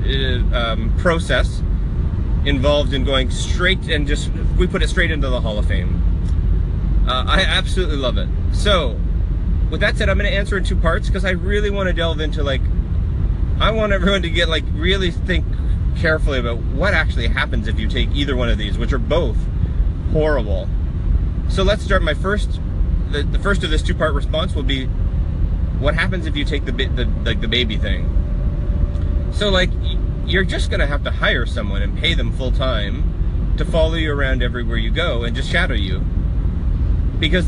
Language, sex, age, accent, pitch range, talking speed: English, male, 30-49, American, 80-85 Hz, 185 wpm